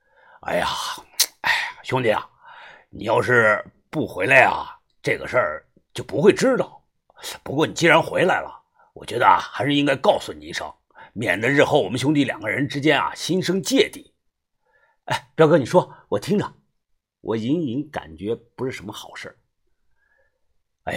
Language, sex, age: Chinese, male, 50-69